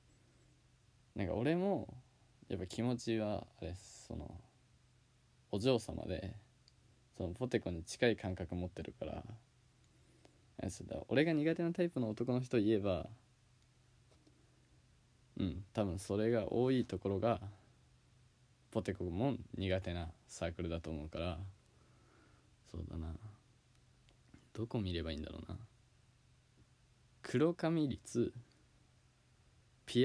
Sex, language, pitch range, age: male, Japanese, 95-125 Hz, 20-39